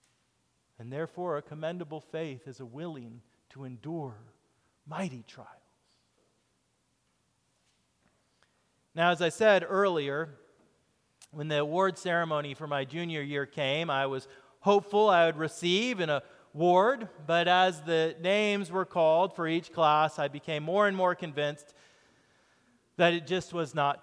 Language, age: English, 40-59